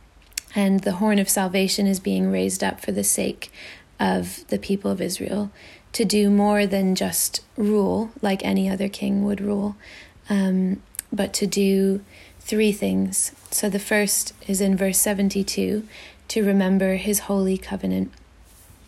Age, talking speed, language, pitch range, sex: 30-49, 150 wpm, English, 185-205 Hz, female